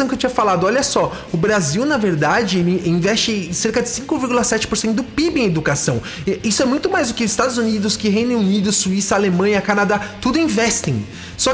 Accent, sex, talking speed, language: Brazilian, male, 180 wpm, English